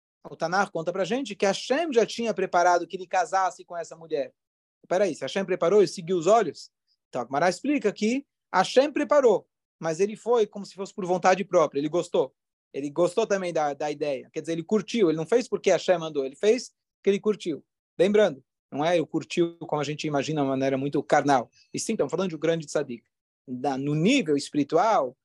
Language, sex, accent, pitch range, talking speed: Portuguese, male, Brazilian, 160-220 Hz, 225 wpm